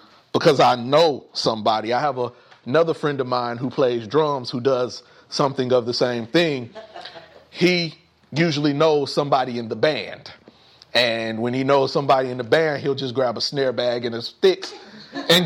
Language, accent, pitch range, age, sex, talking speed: English, American, 120-160 Hz, 30-49, male, 180 wpm